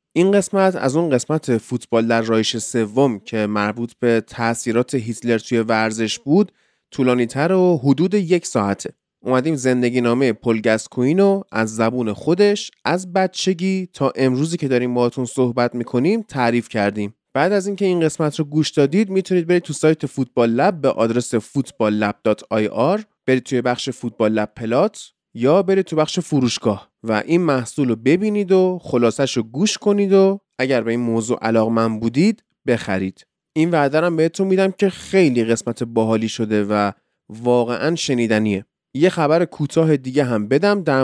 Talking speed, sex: 160 wpm, male